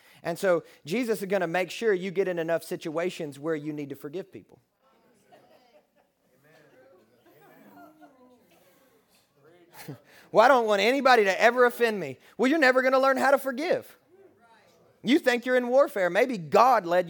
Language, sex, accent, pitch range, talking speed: English, male, American, 190-255 Hz, 160 wpm